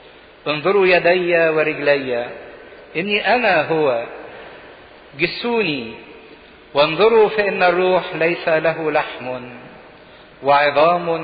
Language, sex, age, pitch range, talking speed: English, male, 50-69, 150-185 Hz, 75 wpm